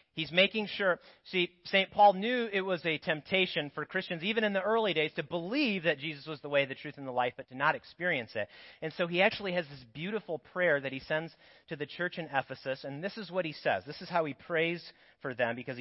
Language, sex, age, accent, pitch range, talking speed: English, male, 40-59, American, 120-180 Hz, 245 wpm